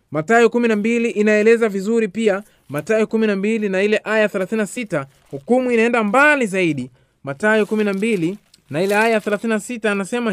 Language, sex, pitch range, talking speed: Swahili, male, 185-240 Hz, 130 wpm